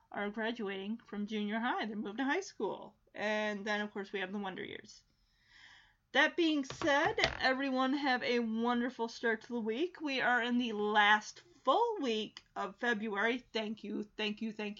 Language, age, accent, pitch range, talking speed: English, 30-49, American, 210-265 Hz, 180 wpm